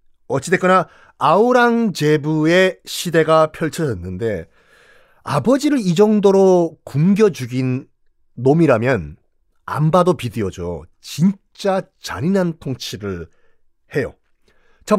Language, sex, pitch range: Korean, male, 140-230 Hz